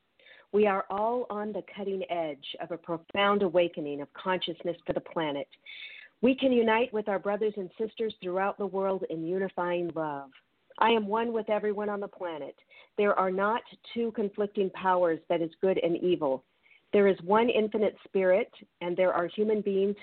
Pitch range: 175-225 Hz